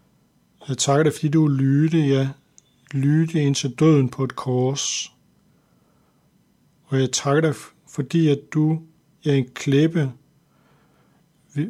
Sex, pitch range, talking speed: male, 135-160 Hz, 135 wpm